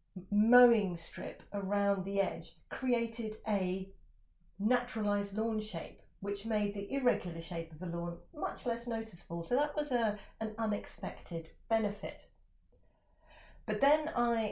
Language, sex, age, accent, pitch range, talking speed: English, female, 40-59, British, 170-215 Hz, 130 wpm